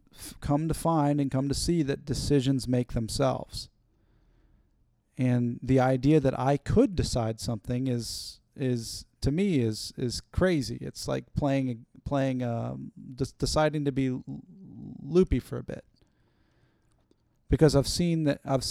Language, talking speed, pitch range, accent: English, 140 wpm, 115-135 Hz, American